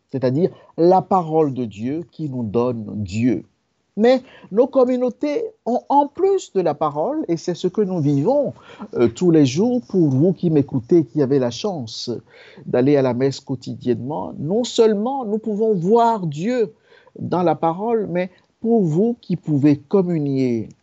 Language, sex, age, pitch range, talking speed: French, male, 50-69, 130-190 Hz, 160 wpm